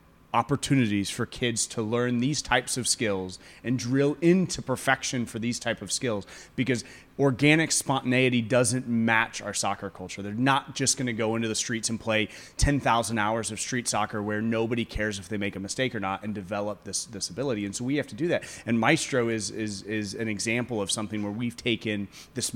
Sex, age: male, 30-49